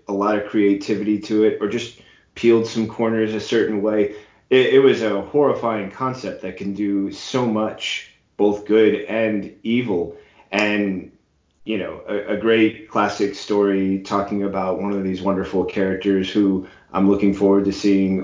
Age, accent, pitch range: 30-49, American, 95-110 Hz